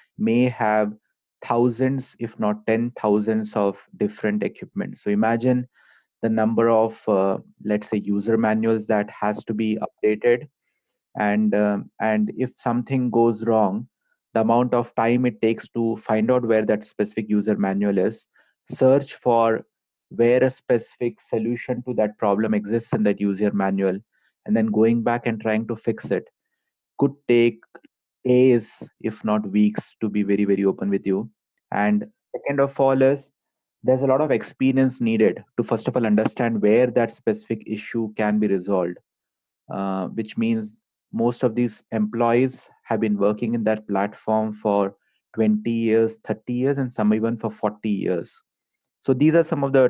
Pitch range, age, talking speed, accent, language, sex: 105-125 Hz, 30-49, 165 wpm, Indian, English, male